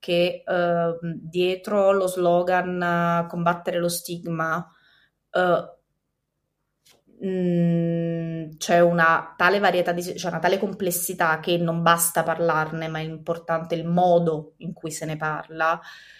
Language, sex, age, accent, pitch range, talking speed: Italian, female, 20-39, native, 165-190 Hz, 130 wpm